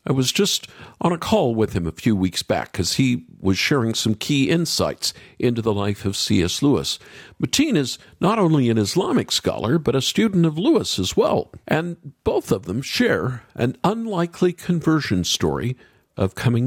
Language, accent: English, American